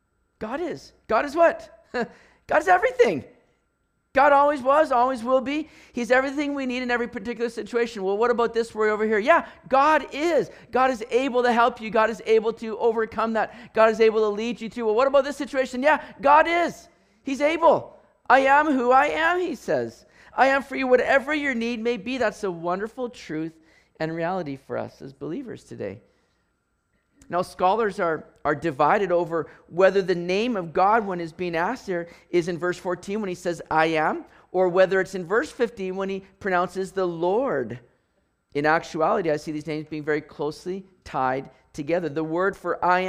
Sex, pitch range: male, 175-245 Hz